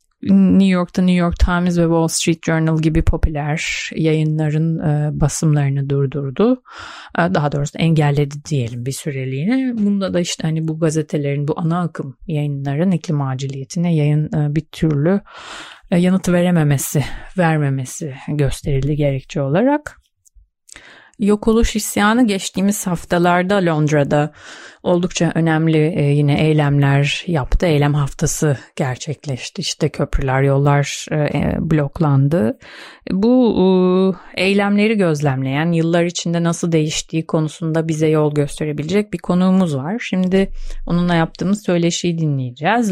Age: 30-49